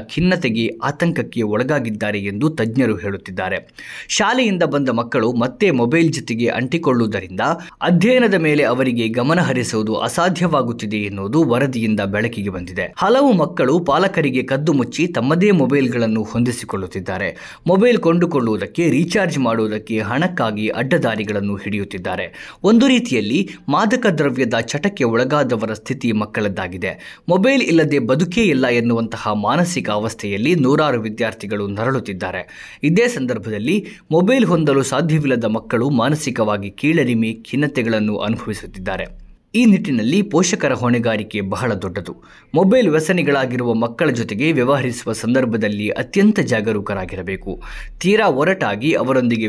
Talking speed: 100 wpm